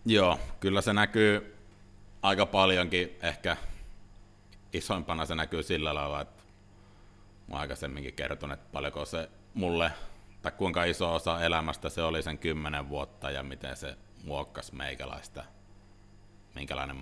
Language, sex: Finnish, male